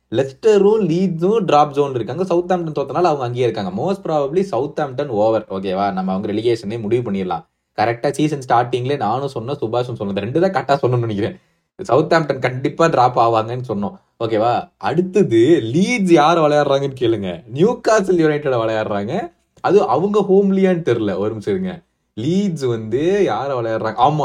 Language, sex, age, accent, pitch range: Tamil, male, 30-49, native, 125-185 Hz